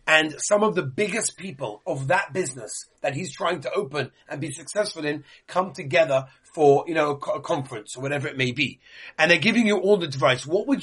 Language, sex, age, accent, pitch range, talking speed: English, male, 30-49, British, 145-205 Hz, 215 wpm